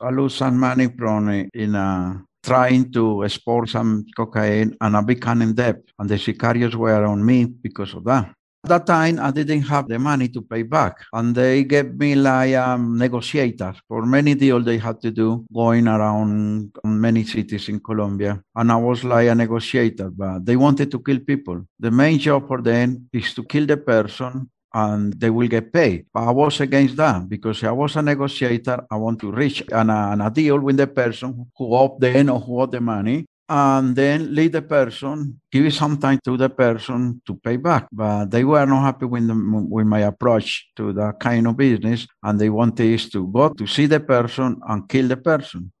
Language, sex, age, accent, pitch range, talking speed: English, male, 60-79, Spanish, 110-130 Hz, 205 wpm